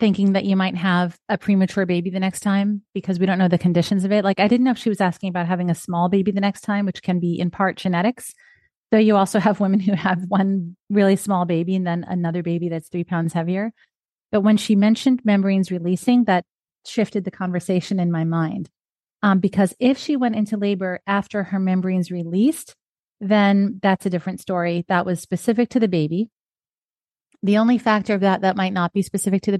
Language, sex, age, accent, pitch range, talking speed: English, female, 30-49, American, 175-205 Hz, 215 wpm